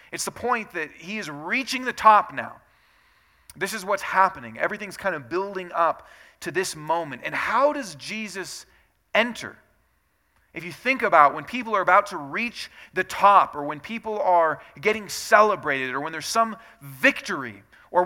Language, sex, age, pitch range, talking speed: English, male, 40-59, 165-225 Hz, 170 wpm